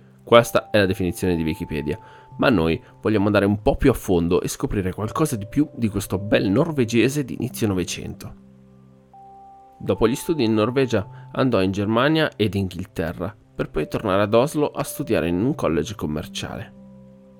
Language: Italian